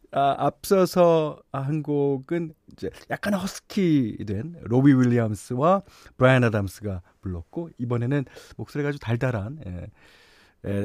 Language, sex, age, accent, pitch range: Korean, male, 40-59, native, 105-165 Hz